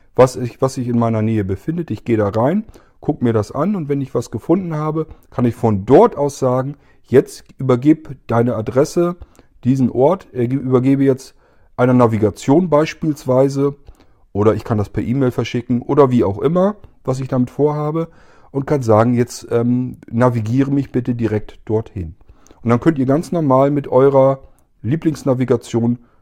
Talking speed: 165 wpm